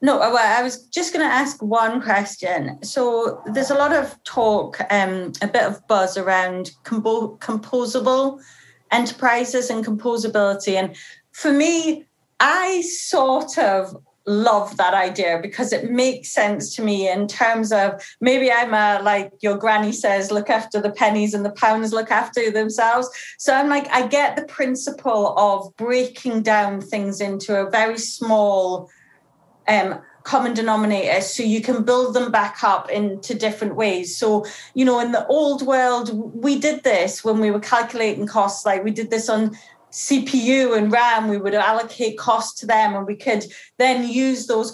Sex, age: female, 30-49